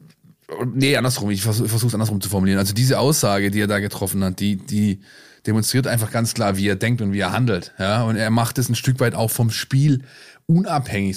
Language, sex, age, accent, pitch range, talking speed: German, male, 20-39, German, 100-125 Hz, 215 wpm